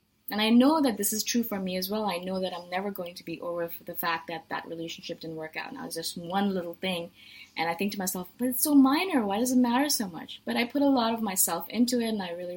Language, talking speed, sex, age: English, 300 wpm, female, 20-39